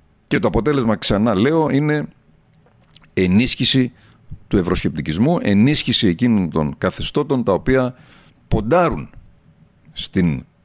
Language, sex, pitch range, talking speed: Greek, male, 100-130 Hz, 95 wpm